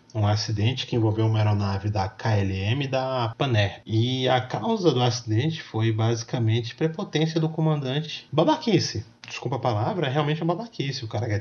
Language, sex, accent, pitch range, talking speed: Portuguese, male, Brazilian, 105-125 Hz, 175 wpm